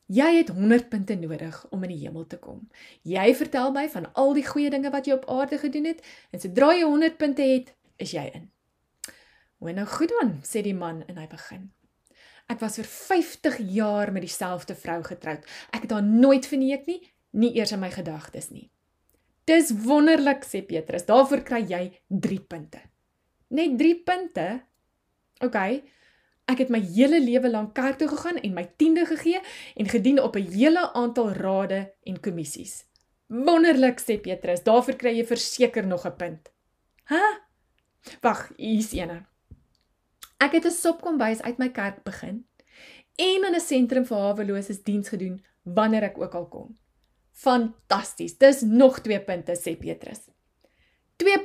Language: English